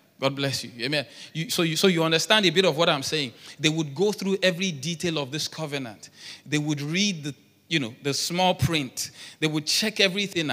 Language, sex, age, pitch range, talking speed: English, male, 30-49, 150-205 Hz, 215 wpm